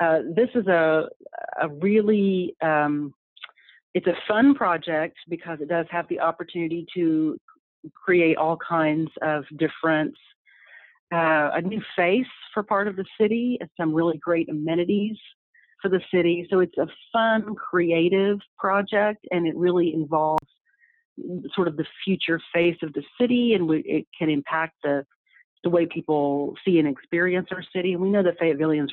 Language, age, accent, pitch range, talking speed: English, 40-59, American, 155-190 Hz, 160 wpm